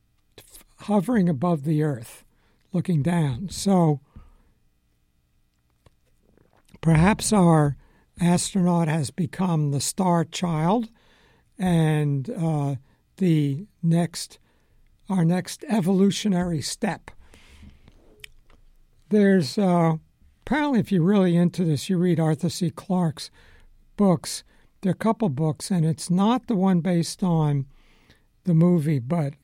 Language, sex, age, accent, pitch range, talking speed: English, male, 60-79, American, 145-190 Hz, 105 wpm